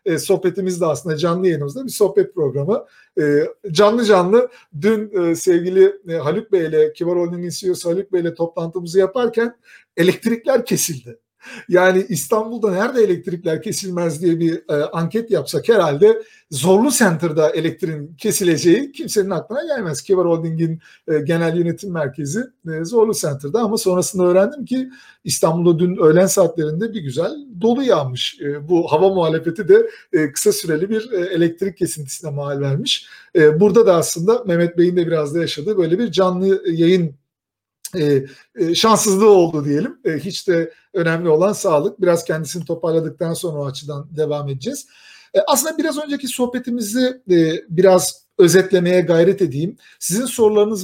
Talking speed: 145 wpm